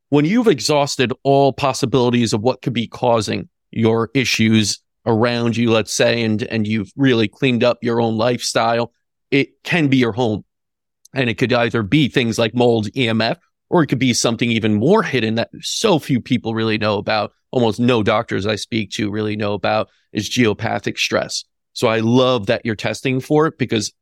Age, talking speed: 40-59, 185 wpm